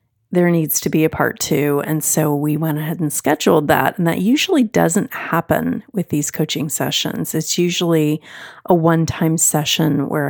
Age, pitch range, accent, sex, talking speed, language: 30-49, 155-195 Hz, American, female, 180 wpm, English